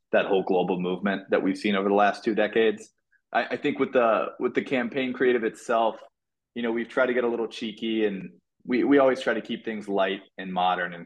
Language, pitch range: English, 95-115 Hz